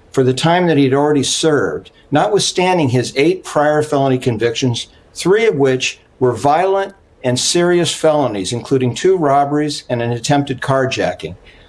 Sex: male